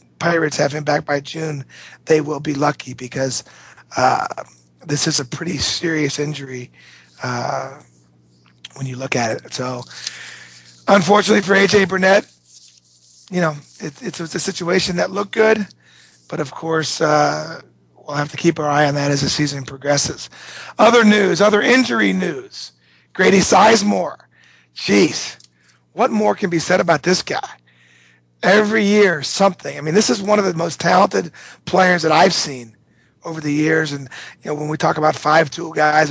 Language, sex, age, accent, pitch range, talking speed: English, male, 40-59, American, 135-175 Hz, 165 wpm